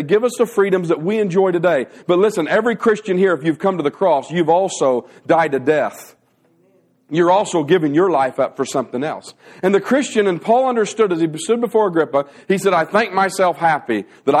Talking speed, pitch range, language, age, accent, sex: 210 wpm, 190-245 Hz, English, 40-59, American, male